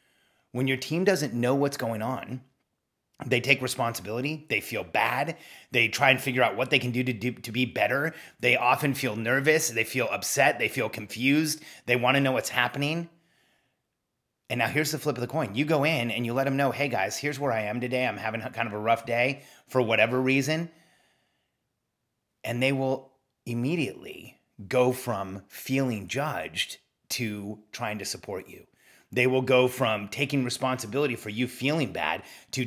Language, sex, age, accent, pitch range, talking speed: English, male, 30-49, American, 120-150 Hz, 185 wpm